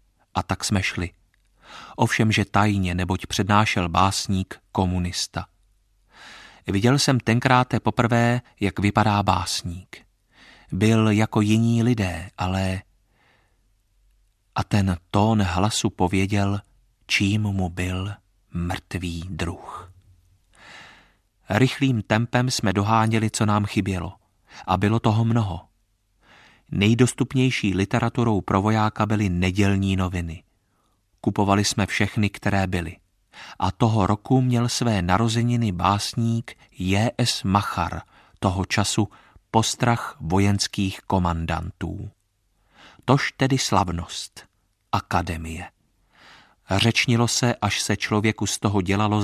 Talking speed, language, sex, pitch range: 100 wpm, Czech, male, 95-110 Hz